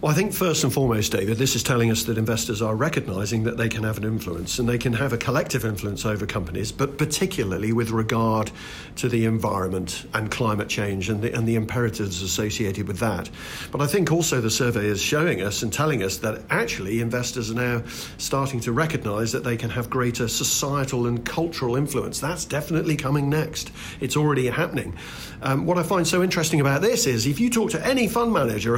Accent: British